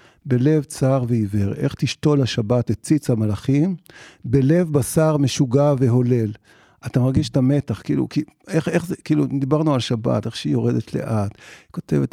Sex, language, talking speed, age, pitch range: male, Hebrew, 155 wpm, 50-69, 120-150 Hz